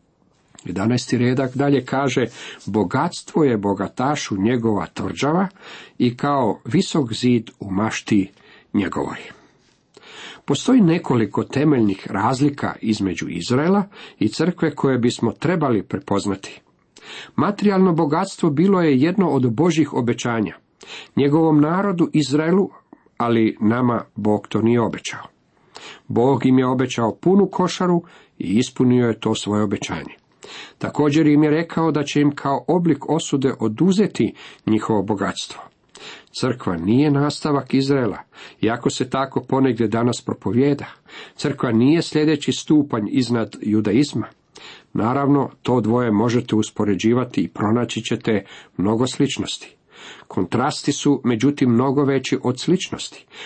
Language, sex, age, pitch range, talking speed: Croatian, male, 50-69, 110-150 Hz, 115 wpm